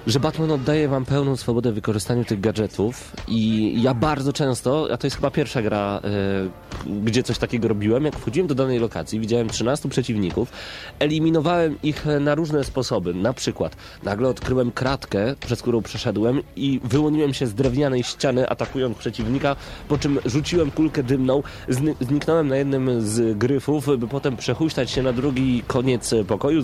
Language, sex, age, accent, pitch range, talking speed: Polish, male, 30-49, native, 120-155 Hz, 160 wpm